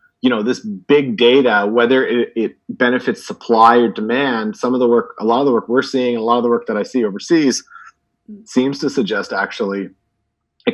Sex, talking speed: male, 205 wpm